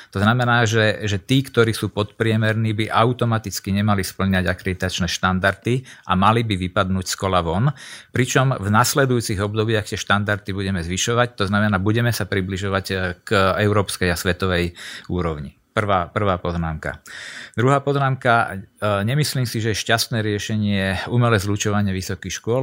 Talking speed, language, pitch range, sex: 145 wpm, Slovak, 95-110 Hz, male